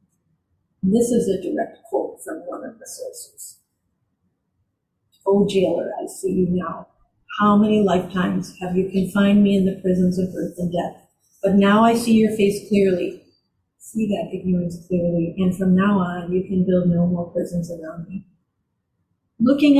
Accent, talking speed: American, 165 wpm